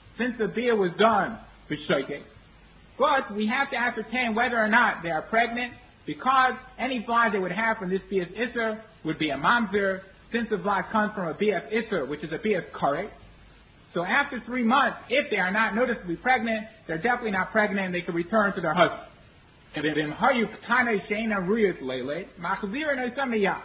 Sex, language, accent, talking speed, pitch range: male, English, American, 165 wpm, 190-240 Hz